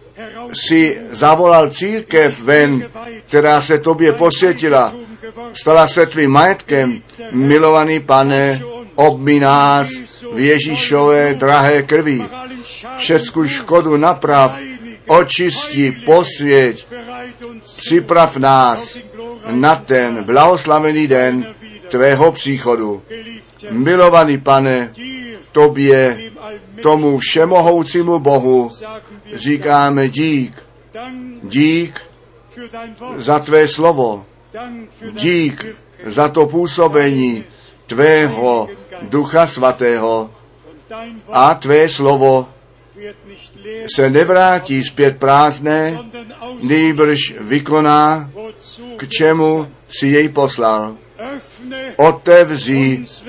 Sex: male